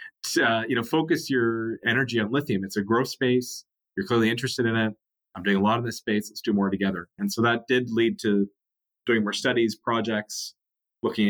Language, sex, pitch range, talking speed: English, male, 105-125 Hz, 205 wpm